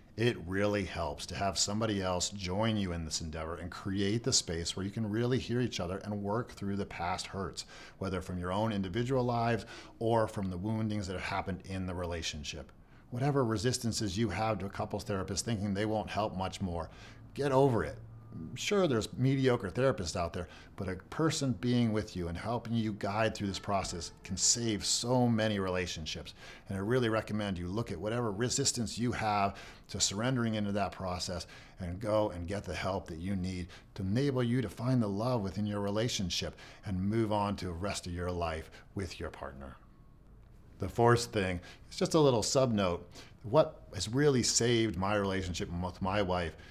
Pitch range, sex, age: 90-115 Hz, male, 40-59